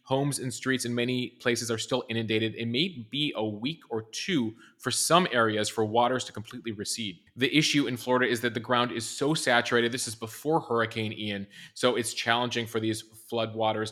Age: 20-39